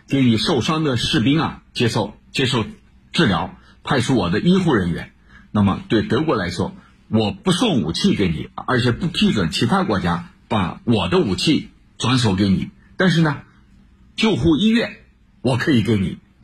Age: 60-79